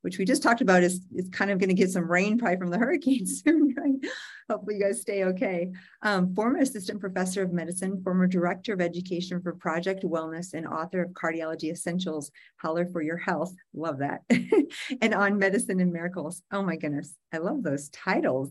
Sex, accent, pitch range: female, American, 170-195 Hz